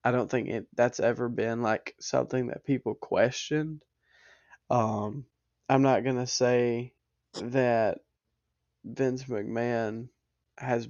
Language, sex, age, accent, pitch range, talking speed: English, male, 20-39, American, 115-140 Hz, 120 wpm